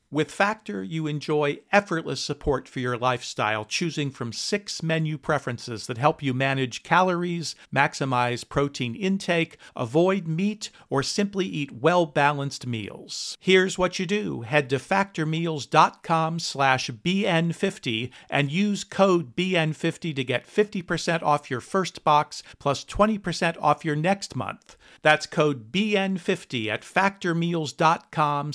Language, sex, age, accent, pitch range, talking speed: English, male, 50-69, American, 125-170 Hz, 125 wpm